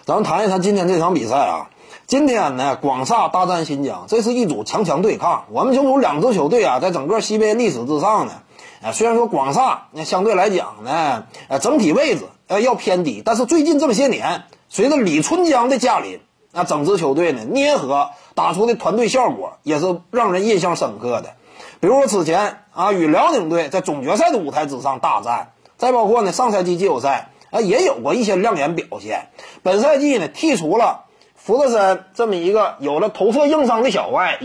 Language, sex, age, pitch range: Chinese, male, 30-49, 200-310 Hz